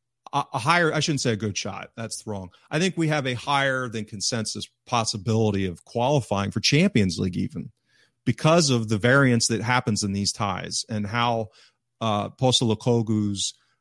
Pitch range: 100-120 Hz